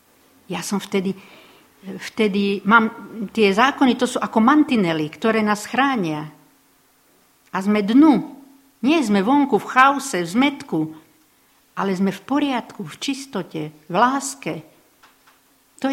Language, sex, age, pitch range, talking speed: Slovak, female, 50-69, 170-245 Hz, 125 wpm